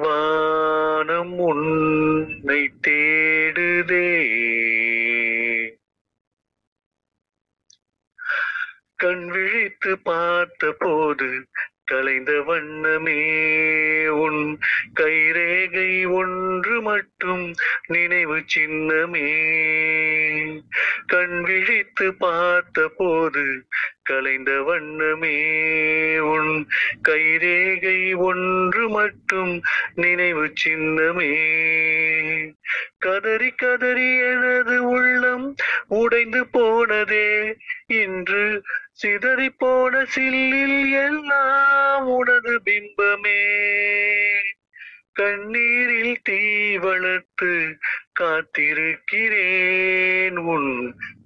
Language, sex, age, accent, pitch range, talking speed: Tamil, male, 30-49, native, 155-210 Hz, 45 wpm